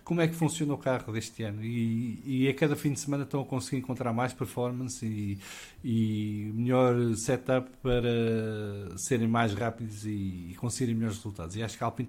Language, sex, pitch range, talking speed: English, male, 105-130 Hz, 185 wpm